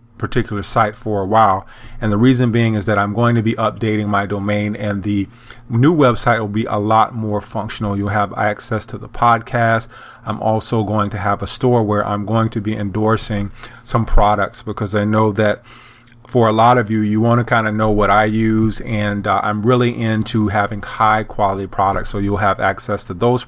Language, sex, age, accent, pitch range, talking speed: English, male, 30-49, American, 105-120 Hz, 210 wpm